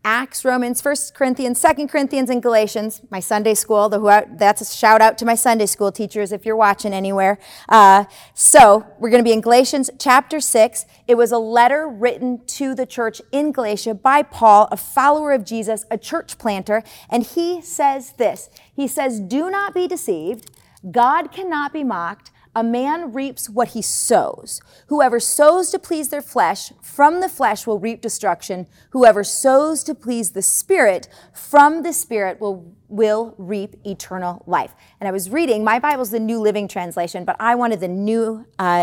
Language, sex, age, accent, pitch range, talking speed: English, female, 30-49, American, 195-265 Hz, 180 wpm